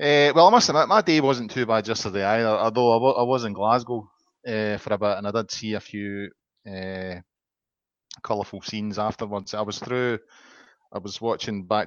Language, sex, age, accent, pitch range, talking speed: English, male, 20-39, British, 100-120 Hz, 200 wpm